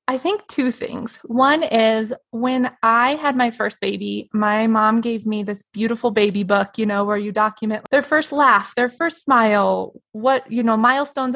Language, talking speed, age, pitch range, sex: English, 185 wpm, 20-39, 205-250 Hz, female